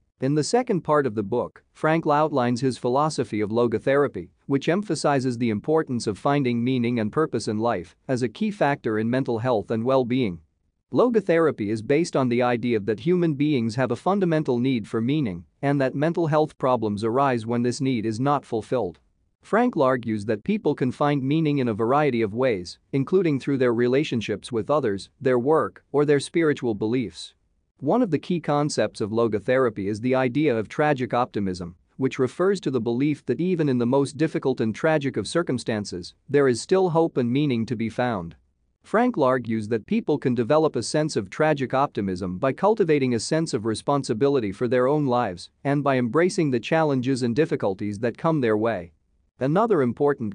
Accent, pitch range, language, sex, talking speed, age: American, 115-150 Hz, English, male, 185 wpm, 40-59